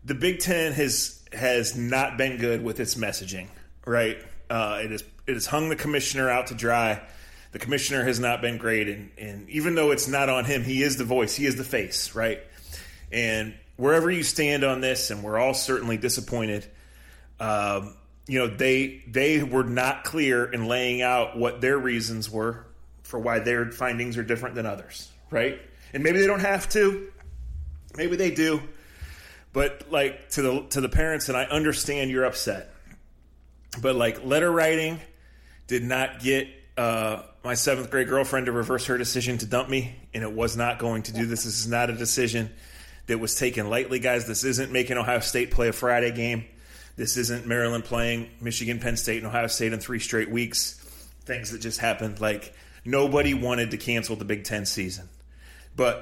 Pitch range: 110-135 Hz